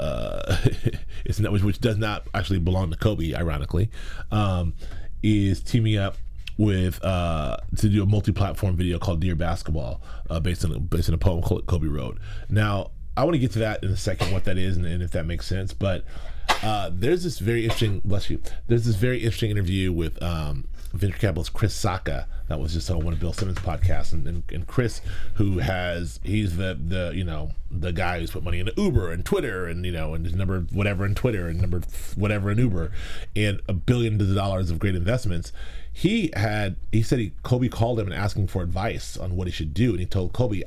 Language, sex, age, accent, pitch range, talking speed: English, male, 30-49, American, 85-105 Hz, 210 wpm